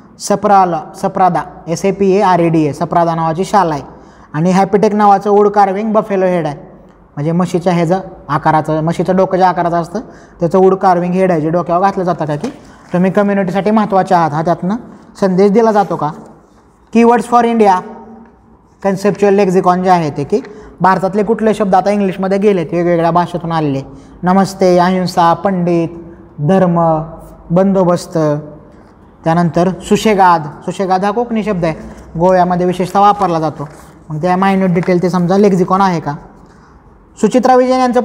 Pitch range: 170-205 Hz